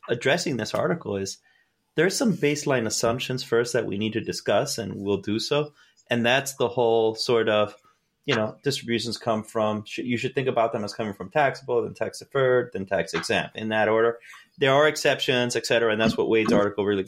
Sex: male